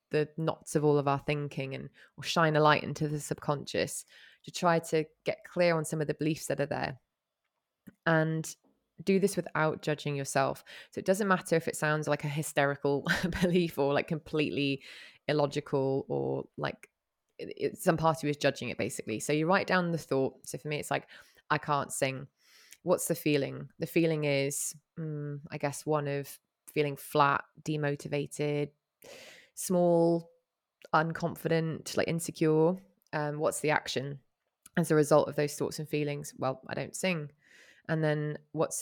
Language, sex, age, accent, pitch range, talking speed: English, female, 20-39, British, 145-165 Hz, 170 wpm